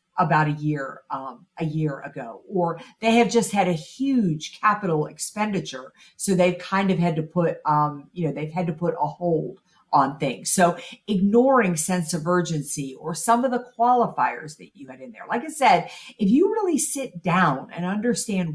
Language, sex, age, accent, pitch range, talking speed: English, female, 50-69, American, 165-245 Hz, 190 wpm